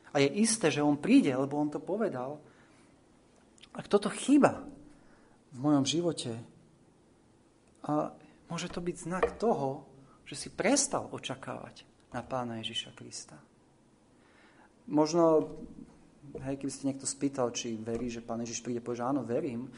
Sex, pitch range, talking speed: male, 115-145 Hz, 140 wpm